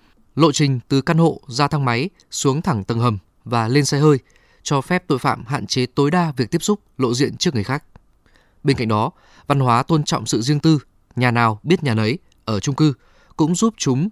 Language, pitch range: Vietnamese, 115-155 Hz